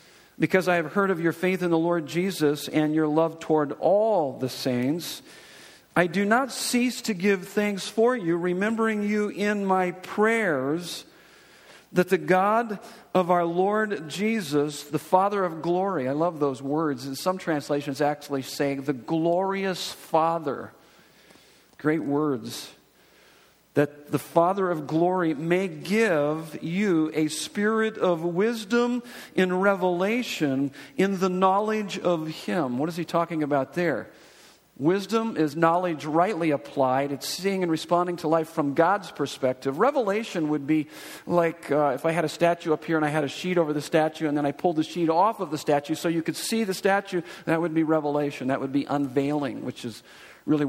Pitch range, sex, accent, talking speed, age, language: 150-190 Hz, male, American, 170 wpm, 50-69, English